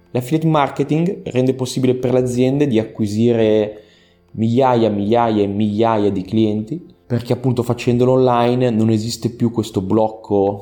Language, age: Italian, 20-39